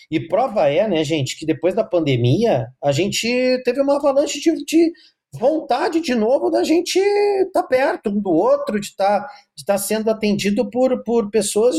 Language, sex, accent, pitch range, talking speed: Portuguese, male, Brazilian, 145-235 Hz, 175 wpm